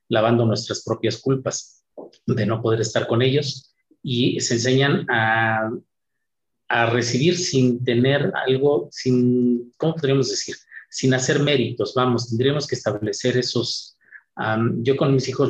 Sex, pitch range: male, 115-130 Hz